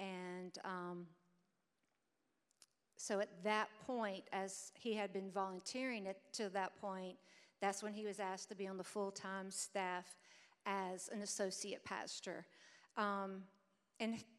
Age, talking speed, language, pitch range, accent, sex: 50-69, 130 wpm, English, 200-230 Hz, American, female